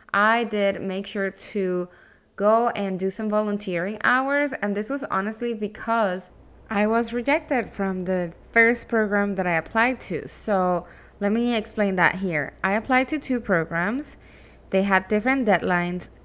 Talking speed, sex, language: 155 wpm, female, English